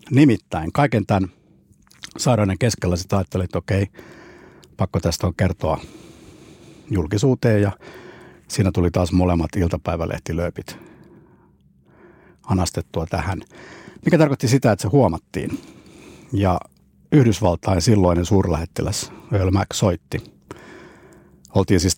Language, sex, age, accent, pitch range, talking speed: Finnish, male, 60-79, native, 90-110 Hz, 100 wpm